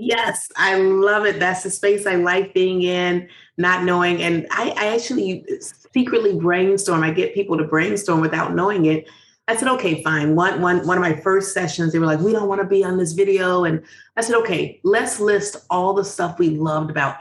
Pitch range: 160-210 Hz